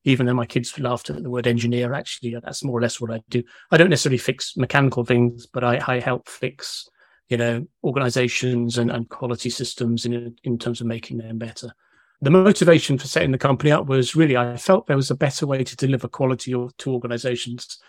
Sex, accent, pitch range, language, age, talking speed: male, British, 120-140 Hz, English, 40-59, 210 wpm